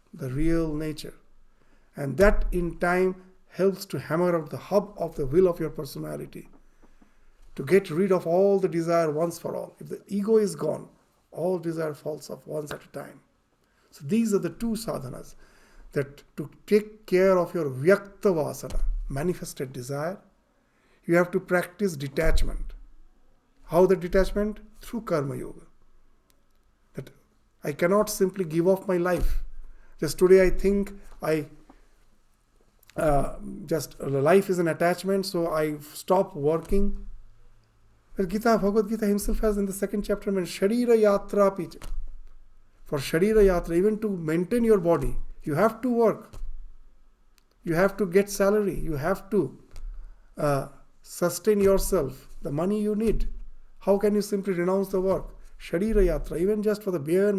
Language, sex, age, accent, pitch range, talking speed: English, male, 50-69, Indian, 150-200 Hz, 155 wpm